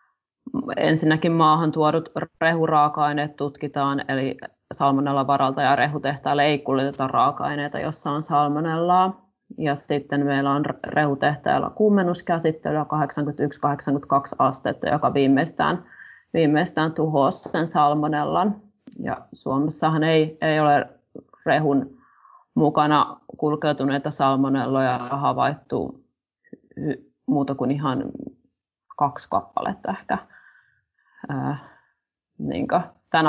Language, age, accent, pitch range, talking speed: Finnish, 30-49, native, 145-165 Hz, 85 wpm